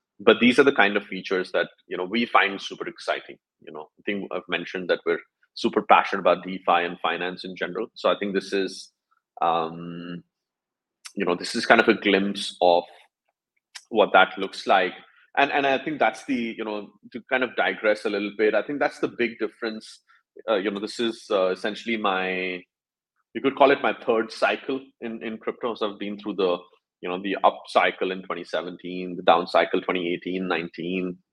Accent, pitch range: Indian, 90-110 Hz